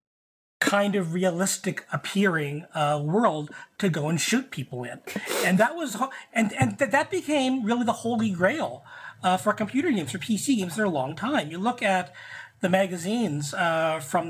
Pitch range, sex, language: 170-220 Hz, male, English